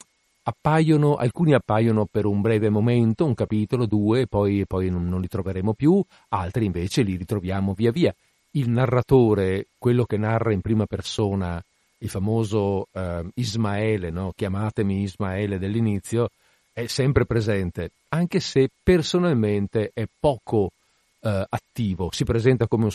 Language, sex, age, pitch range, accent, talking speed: Italian, male, 50-69, 100-125 Hz, native, 130 wpm